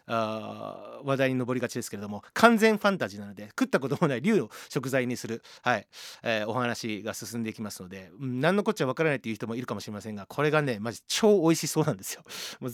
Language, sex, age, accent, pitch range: Japanese, male, 40-59, native, 115-195 Hz